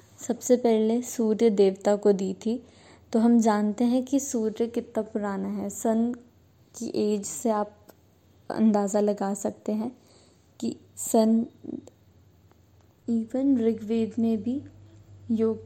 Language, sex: Hindi, female